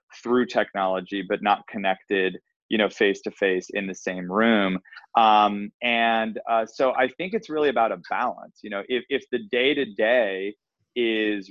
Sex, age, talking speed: male, 30-49, 155 wpm